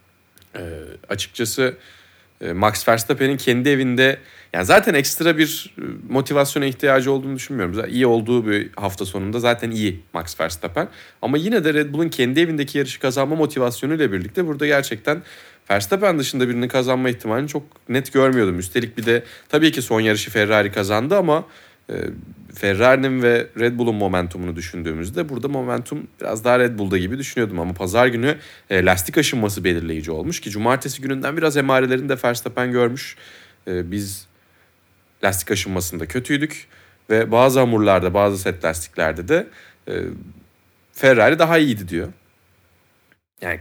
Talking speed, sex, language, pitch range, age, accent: 140 wpm, male, Turkish, 95-135 Hz, 30-49, native